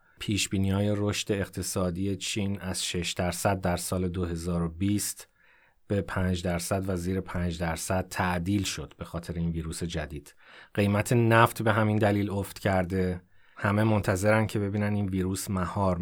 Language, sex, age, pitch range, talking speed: Persian, male, 30-49, 90-105 Hz, 145 wpm